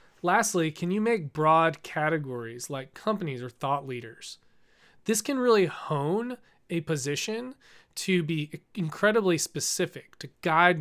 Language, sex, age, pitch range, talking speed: English, male, 30-49, 135-170 Hz, 130 wpm